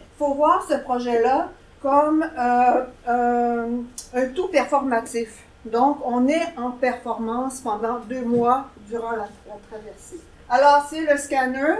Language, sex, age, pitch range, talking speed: French, female, 50-69, 230-275 Hz, 135 wpm